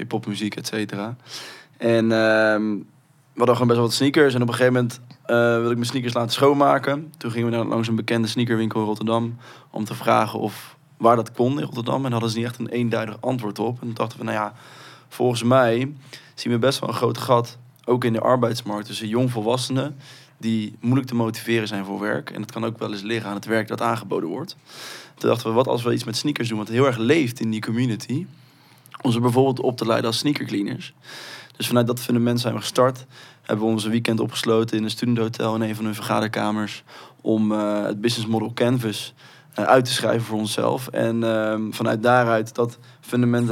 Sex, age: male, 20-39